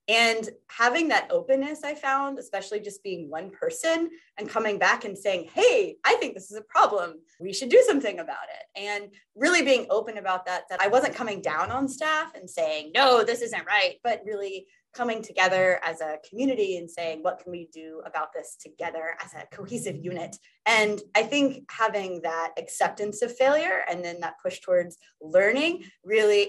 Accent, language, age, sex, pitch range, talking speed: American, English, 20-39, female, 185-270 Hz, 190 wpm